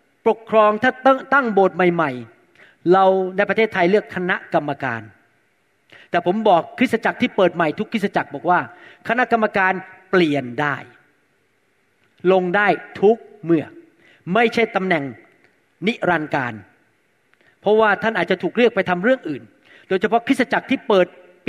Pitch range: 175-225 Hz